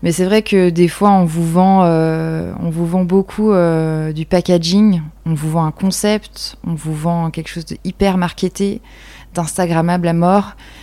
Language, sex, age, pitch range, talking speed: French, female, 20-39, 160-185 Hz, 185 wpm